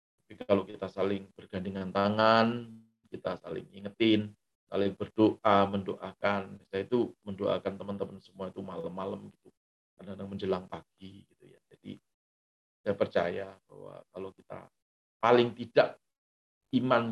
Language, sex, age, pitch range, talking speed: Indonesian, male, 40-59, 95-110 Hz, 120 wpm